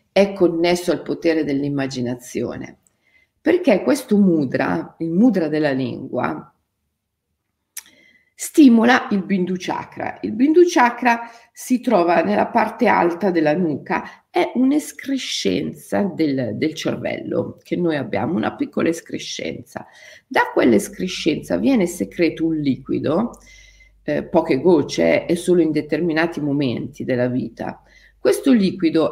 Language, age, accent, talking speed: Italian, 50-69, native, 115 wpm